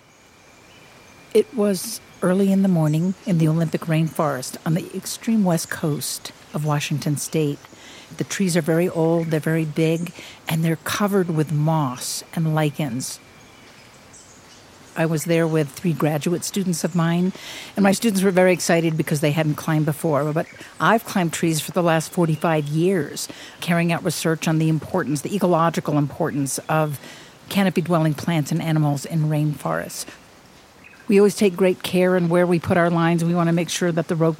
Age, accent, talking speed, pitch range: 50-69, American, 170 wpm, 160-185 Hz